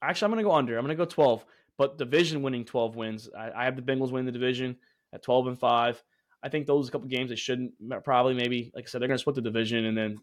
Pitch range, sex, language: 120-135 Hz, male, English